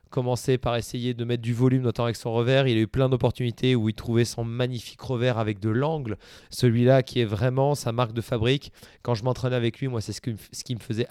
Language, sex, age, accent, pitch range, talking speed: French, male, 20-39, French, 120-135 Hz, 240 wpm